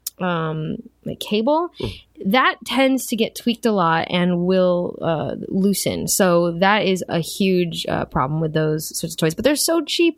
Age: 20-39